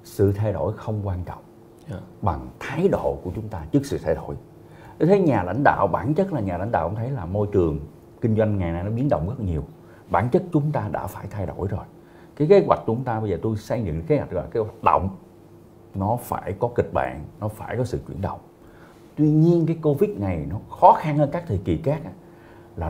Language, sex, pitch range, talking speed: Vietnamese, male, 100-160 Hz, 240 wpm